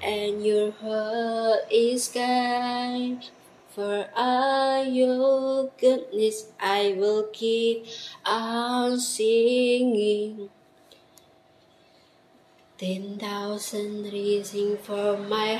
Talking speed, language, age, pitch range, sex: 75 wpm, Indonesian, 20-39, 205-260 Hz, female